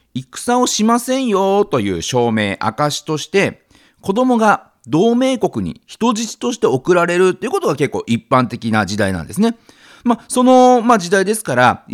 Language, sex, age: Japanese, male, 40-59